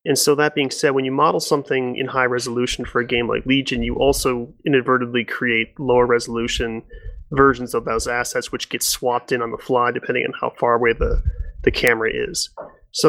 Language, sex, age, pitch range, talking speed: English, male, 30-49, 120-155 Hz, 200 wpm